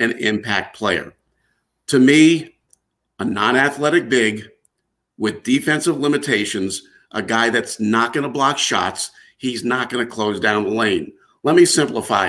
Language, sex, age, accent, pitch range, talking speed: English, male, 50-69, American, 130-185 Hz, 145 wpm